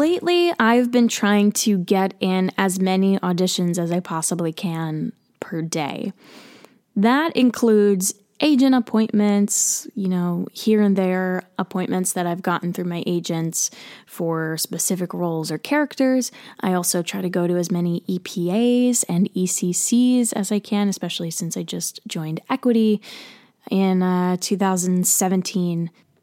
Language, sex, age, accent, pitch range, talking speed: English, female, 10-29, American, 180-225 Hz, 135 wpm